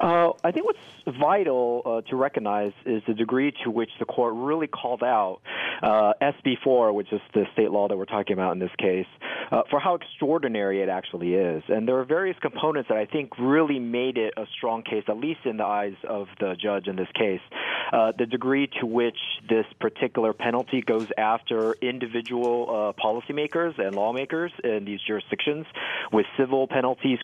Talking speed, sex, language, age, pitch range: 185 wpm, male, English, 40-59, 105-130 Hz